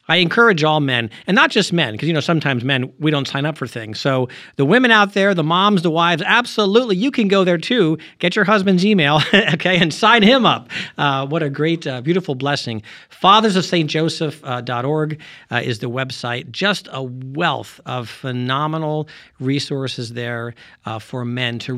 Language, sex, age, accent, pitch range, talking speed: English, male, 50-69, American, 120-155 Hz, 180 wpm